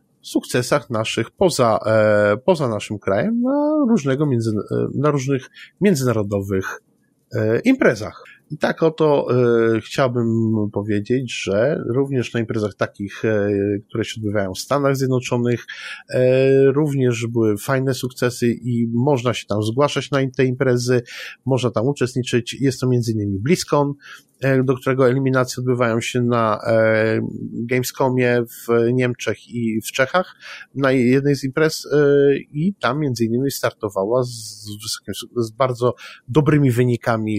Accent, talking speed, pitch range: native, 120 wpm, 110-135 Hz